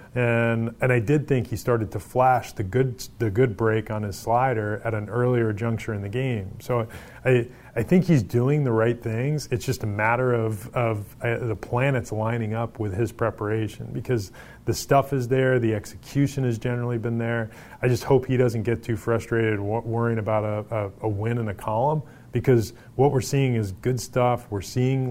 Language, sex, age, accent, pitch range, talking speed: English, male, 30-49, American, 110-125 Hz, 200 wpm